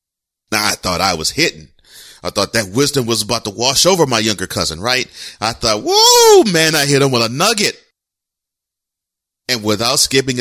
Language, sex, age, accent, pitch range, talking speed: English, male, 40-59, American, 90-125 Hz, 180 wpm